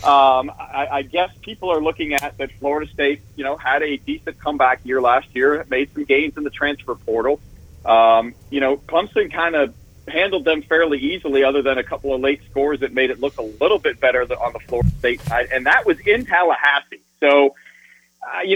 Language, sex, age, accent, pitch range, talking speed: English, male, 40-59, American, 135-165 Hz, 210 wpm